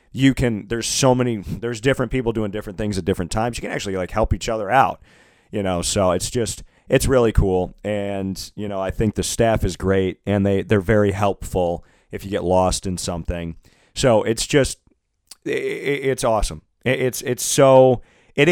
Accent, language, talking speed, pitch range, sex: American, English, 190 wpm, 95-120 Hz, male